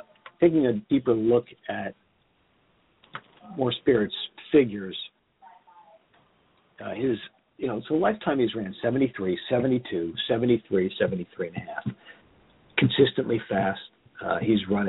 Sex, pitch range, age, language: male, 100-125 Hz, 50-69, English